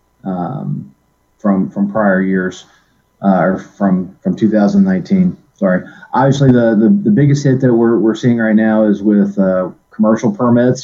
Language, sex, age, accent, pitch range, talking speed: English, male, 30-49, American, 100-120 Hz, 155 wpm